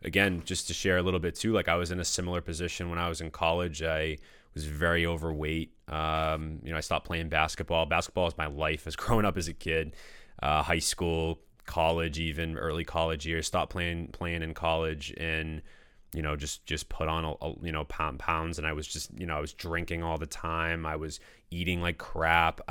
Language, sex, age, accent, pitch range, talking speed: English, male, 20-39, American, 80-95 Hz, 220 wpm